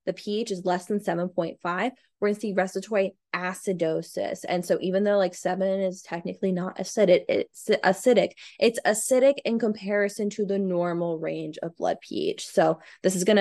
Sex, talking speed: female, 175 wpm